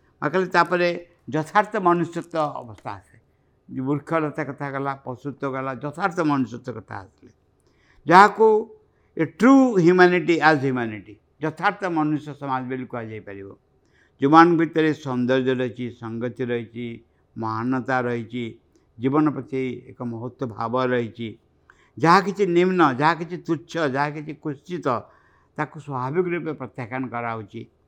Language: English